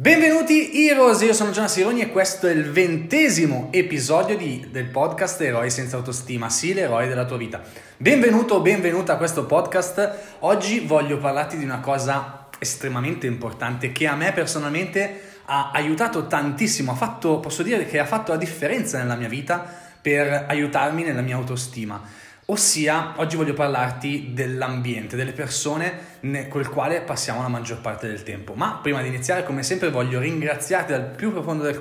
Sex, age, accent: male, 20-39, native